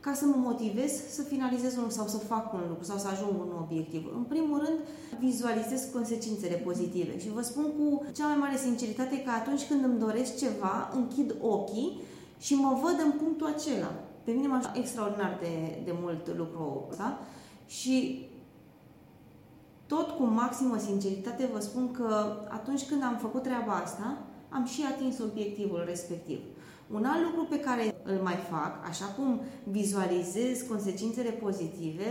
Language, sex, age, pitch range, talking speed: Romanian, female, 20-39, 195-270 Hz, 165 wpm